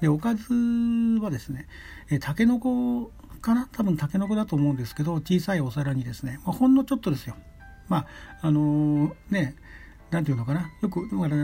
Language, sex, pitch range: Japanese, male, 130-185 Hz